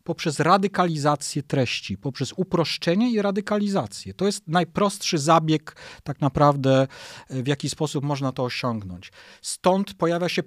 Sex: male